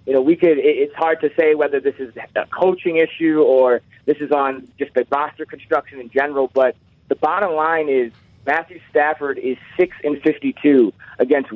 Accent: American